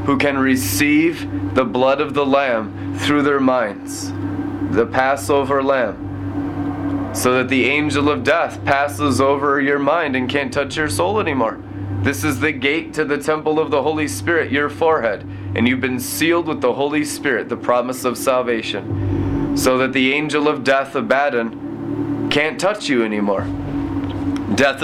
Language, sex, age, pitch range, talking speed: English, male, 30-49, 110-150 Hz, 160 wpm